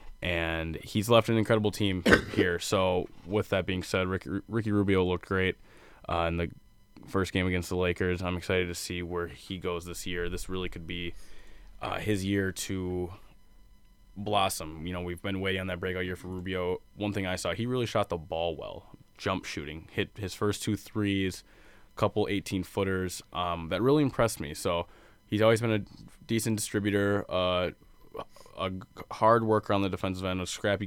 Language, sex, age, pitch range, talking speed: English, male, 20-39, 90-105 Hz, 185 wpm